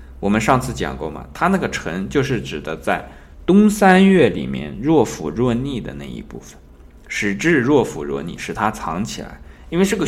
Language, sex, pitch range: Chinese, male, 70-120 Hz